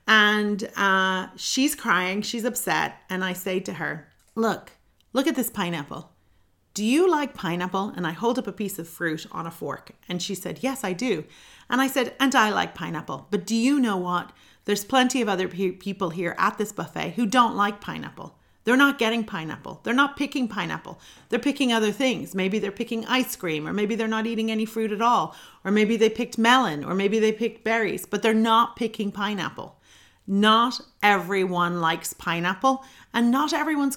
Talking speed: 195 wpm